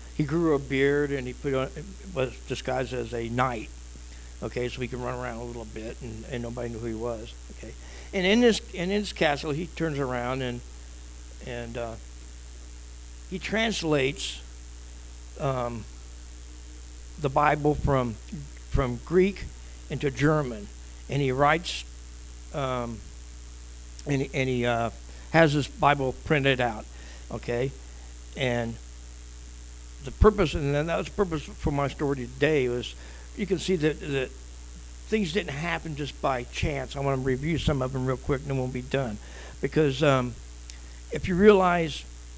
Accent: American